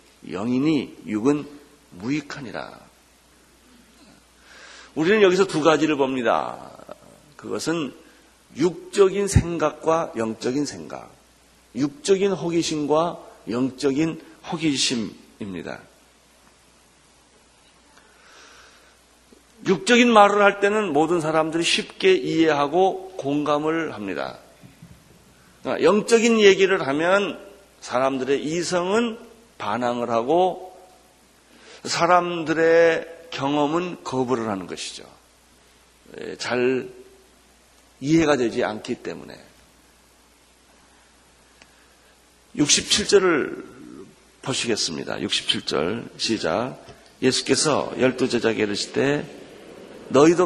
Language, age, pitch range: Korean, 40-59, 125-185 Hz